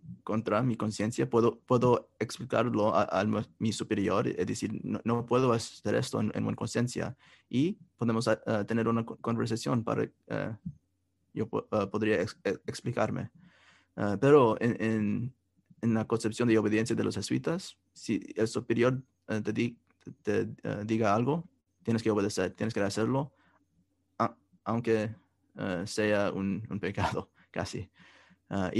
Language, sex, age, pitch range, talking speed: English, male, 20-39, 100-115 Hz, 145 wpm